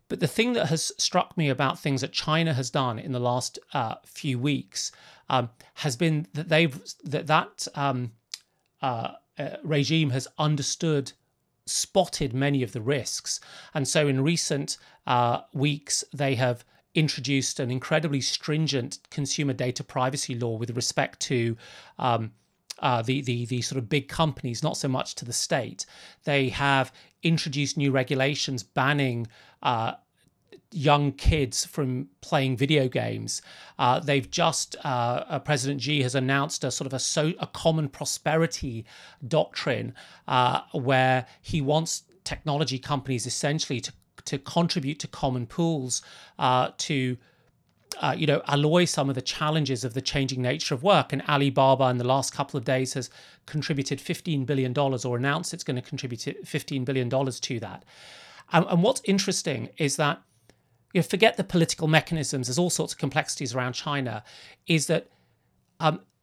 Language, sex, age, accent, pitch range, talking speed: English, male, 40-59, British, 130-155 Hz, 155 wpm